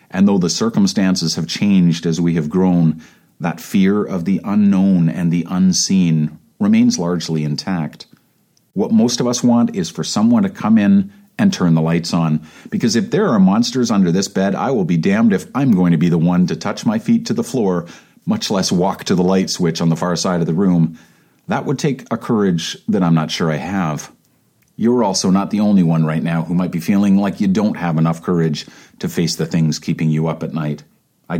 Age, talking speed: 40-59, 220 wpm